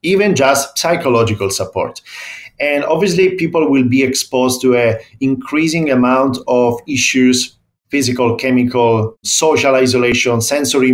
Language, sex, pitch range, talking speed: English, male, 115-145 Hz, 115 wpm